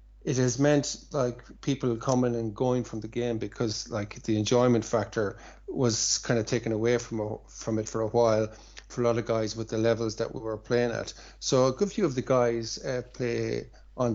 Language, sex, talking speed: English, male, 215 wpm